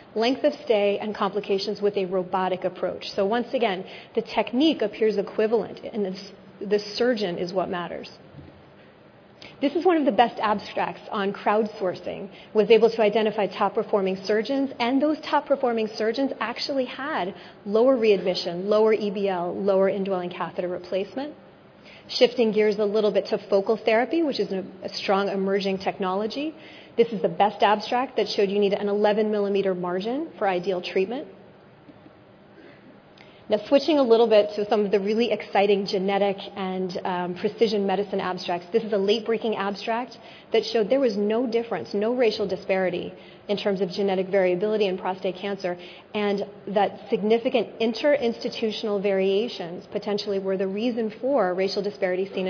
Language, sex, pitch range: English, female, 195-230 Hz